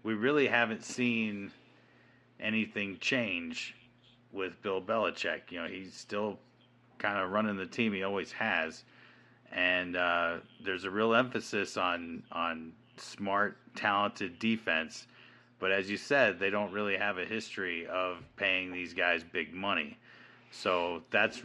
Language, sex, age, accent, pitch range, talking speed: English, male, 30-49, American, 90-115 Hz, 140 wpm